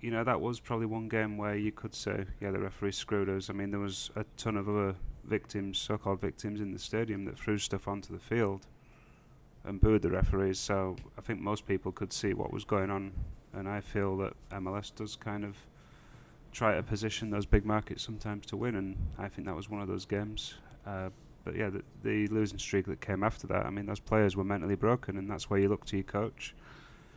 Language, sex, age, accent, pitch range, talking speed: English, male, 30-49, British, 100-110 Hz, 225 wpm